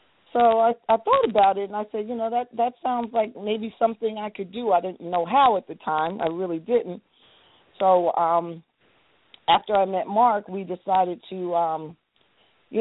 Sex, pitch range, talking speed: female, 160-195 Hz, 190 wpm